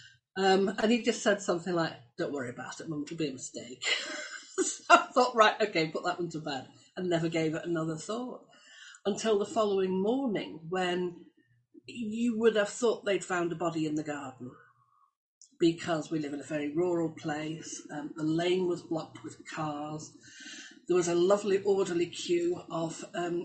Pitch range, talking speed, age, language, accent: 165-275 Hz, 180 wpm, 40-59, English, British